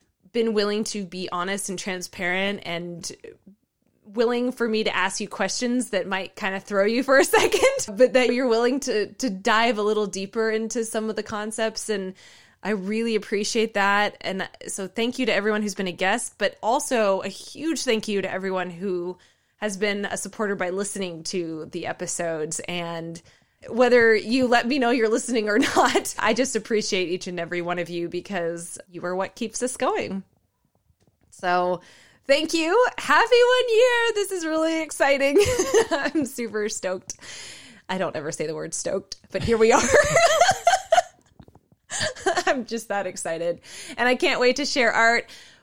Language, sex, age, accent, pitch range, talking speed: English, female, 20-39, American, 190-245 Hz, 175 wpm